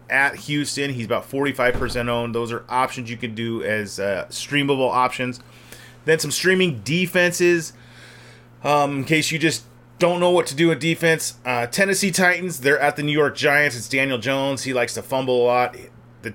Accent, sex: American, male